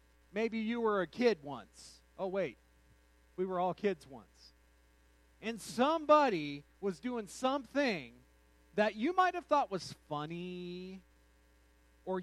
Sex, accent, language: male, American, English